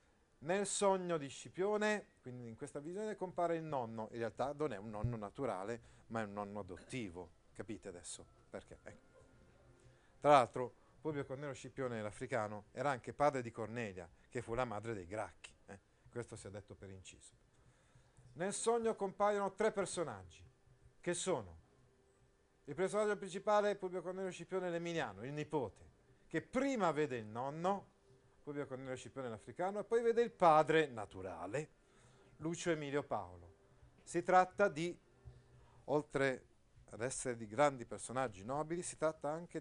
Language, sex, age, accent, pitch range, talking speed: Italian, male, 40-59, native, 120-170 Hz, 150 wpm